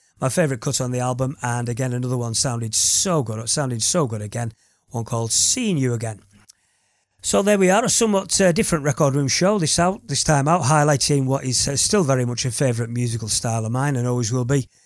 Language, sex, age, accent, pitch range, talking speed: English, male, 40-59, British, 120-150 Hz, 225 wpm